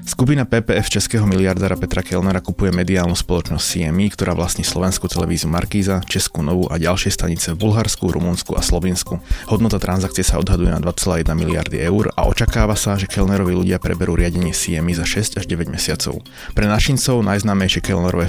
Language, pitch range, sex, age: Slovak, 85-100 Hz, male, 30-49